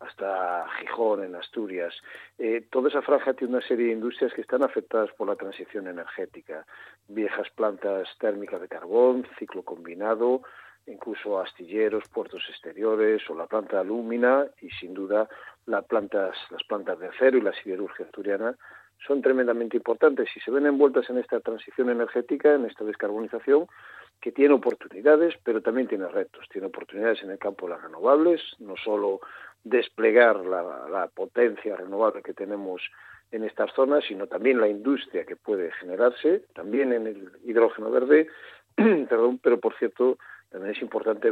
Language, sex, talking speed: Spanish, male, 155 wpm